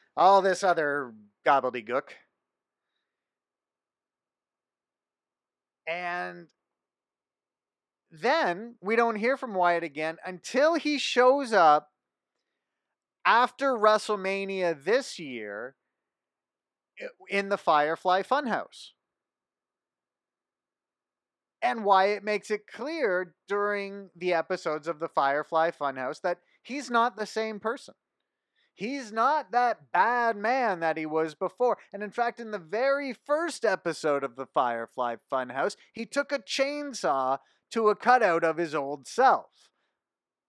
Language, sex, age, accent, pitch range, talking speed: English, male, 30-49, American, 145-230 Hz, 110 wpm